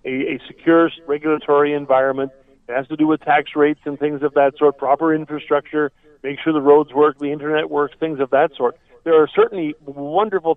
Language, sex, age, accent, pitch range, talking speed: English, male, 50-69, American, 145-175 Hz, 200 wpm